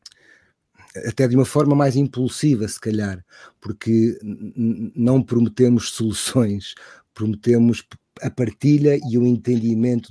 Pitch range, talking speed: 110-130 Hz, 105 wpm